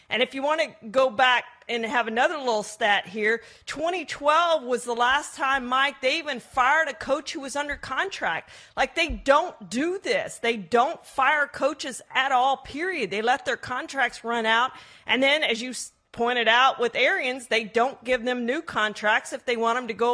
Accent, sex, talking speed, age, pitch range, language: American, female, 195 wpm, 40-59, 220-280 Hz, English